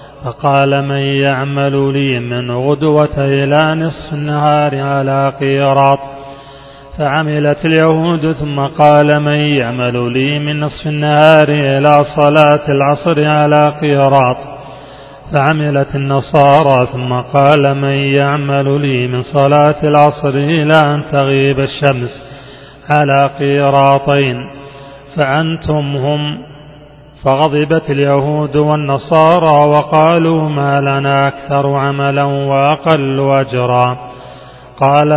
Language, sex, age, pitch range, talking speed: Arabic, male, 30-49, 140-150 Hz, 95 wpm